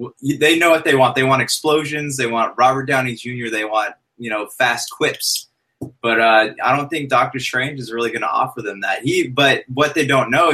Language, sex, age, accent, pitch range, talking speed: English, male, 20-39, American, 115-140 Hz, 220 wpm